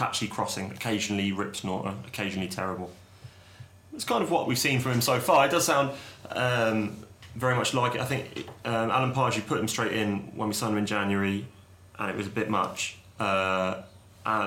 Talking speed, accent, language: 195 wpm, British, English